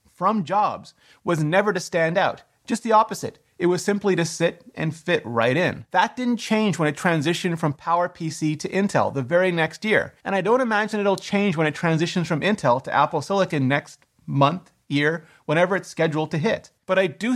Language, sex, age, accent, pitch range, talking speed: English, male, 30-49, American, 155-205 Hz, 200 wpm